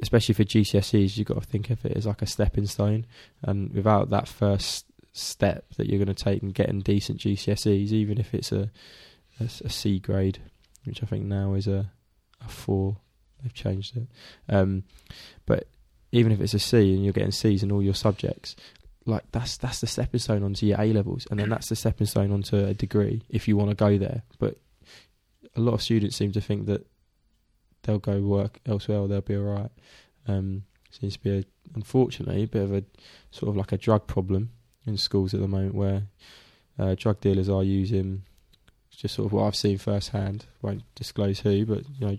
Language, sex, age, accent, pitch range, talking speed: English, male, 20-39, British, 100-110 Hz, 205 wpm